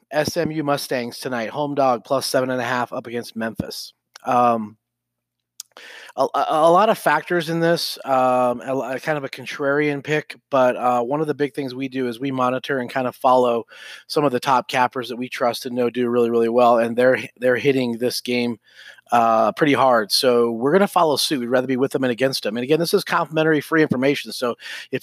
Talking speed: 220 wpm